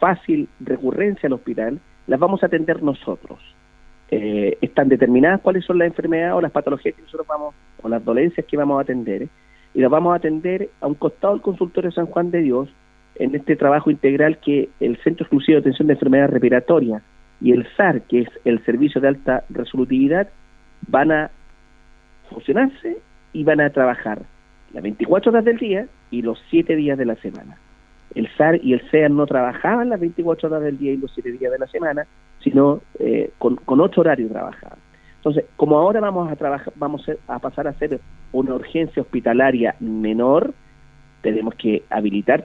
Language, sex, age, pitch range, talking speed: Spanish, male, 40-59, 120-165 Hz, 185 wpm